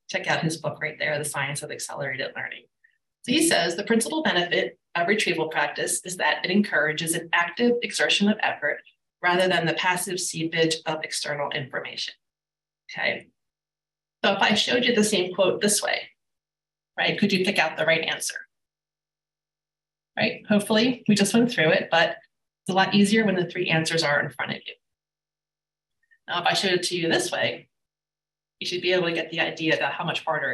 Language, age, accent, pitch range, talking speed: English, 30-49, American, 155-205 Hz, 195 wpm